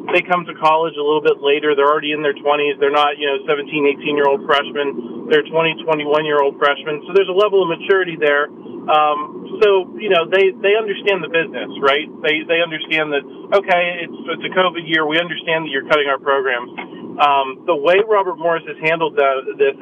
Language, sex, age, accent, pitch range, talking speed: English, male, 40-59, American, 145-175 Hz, 205 wpm